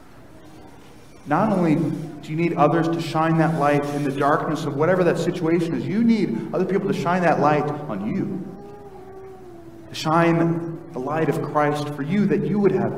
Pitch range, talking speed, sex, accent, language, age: 155-205 Hz, 185 wpm, male, American, English, 30-49